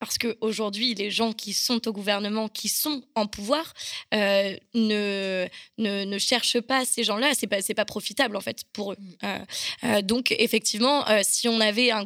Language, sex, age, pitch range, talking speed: French, female, 20-39, 200-230 Hz, 195 wpm